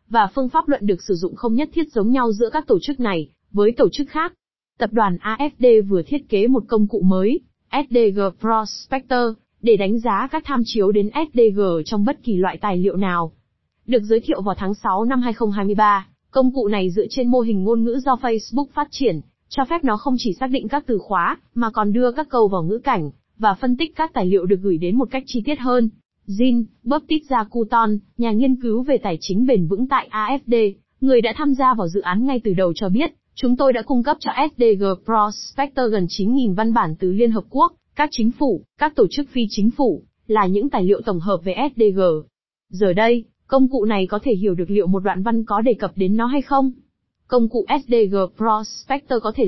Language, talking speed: Vietnamese, 225 wpm